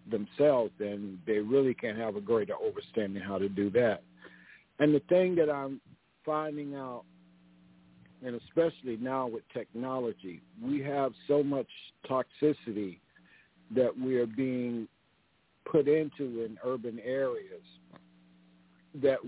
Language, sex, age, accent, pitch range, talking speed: English, male, 50-69, American, 110-140 Hz, 125 wpm